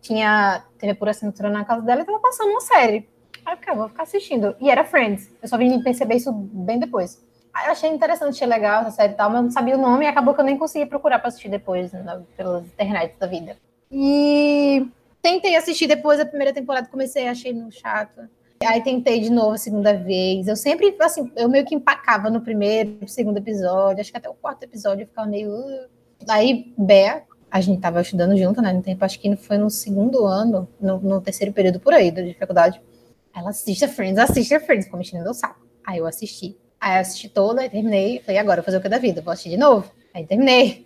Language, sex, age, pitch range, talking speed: Portuguese, female, 20-39, 200-275 Hz, 225 wpm